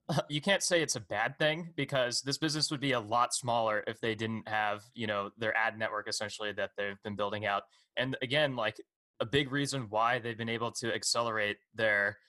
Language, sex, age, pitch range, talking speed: English, male, 20-39, 110-135 Hz, 210 wpm